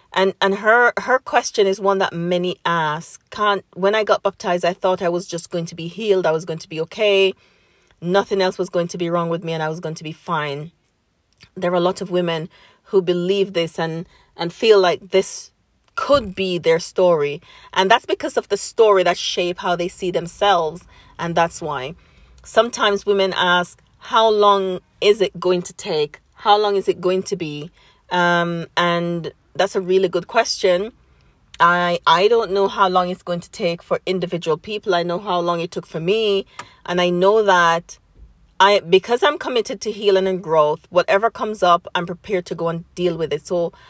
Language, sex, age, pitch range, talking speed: English, female, 30-49, 170-195 Hz, 200 wpm